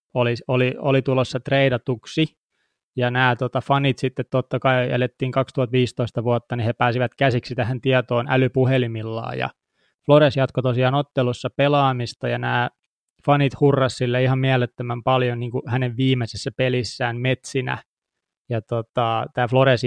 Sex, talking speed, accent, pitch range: male, 135 wpm, native, 120-130 Hz